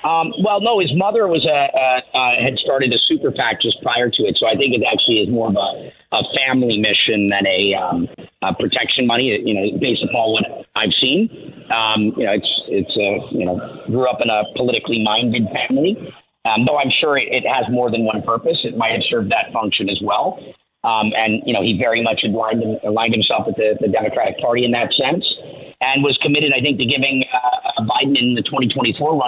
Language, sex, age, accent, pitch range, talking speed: English, male, 40-59, American, 110-135 Hz, 215 wpm